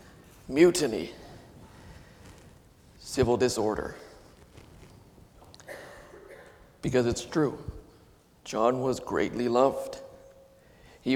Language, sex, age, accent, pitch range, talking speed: English, male, 50-69, American, 120-150 Hz, 60 wpm